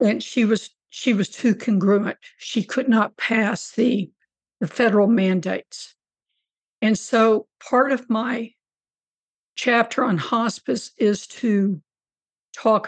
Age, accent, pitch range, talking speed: 60-79, American, 205-235 Hz, 120 wpm